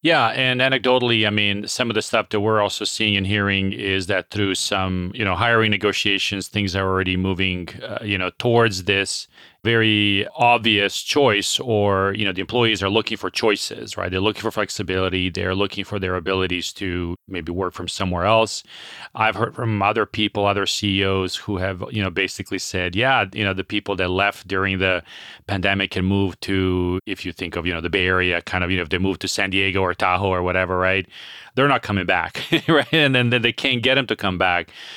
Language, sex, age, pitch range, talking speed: English, male, 40-59, 95-115 Hz, 215 wpm